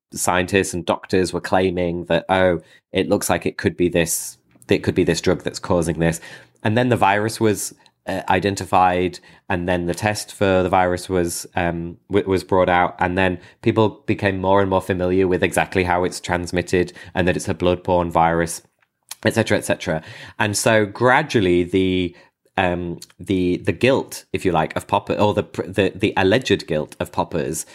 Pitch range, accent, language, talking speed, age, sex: 85-95 Hz, British, English, 185 wpm, 30-49, male